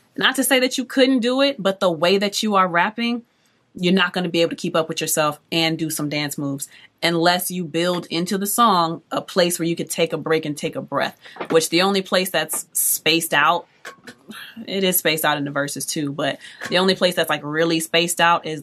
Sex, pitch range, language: female, 155-190 Hz, English